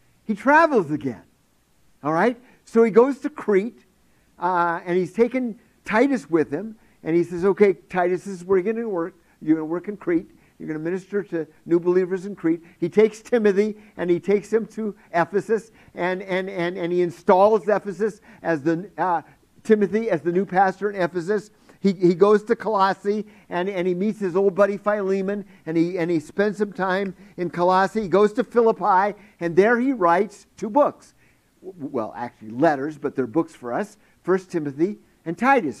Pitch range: 170-210 Hz